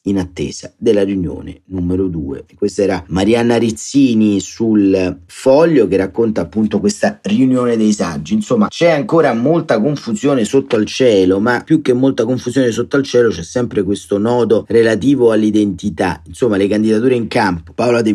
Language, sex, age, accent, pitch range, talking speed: Italian, male, 40-59, native, 90-115 Hz, 160 wpm